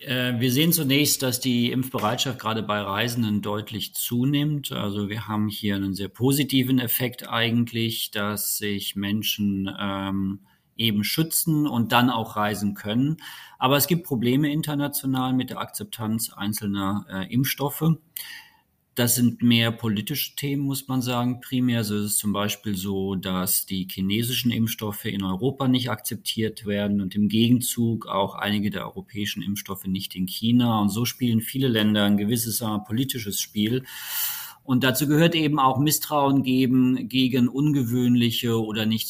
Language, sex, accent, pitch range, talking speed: German, male, German, 105-130 Hz, 145 wpm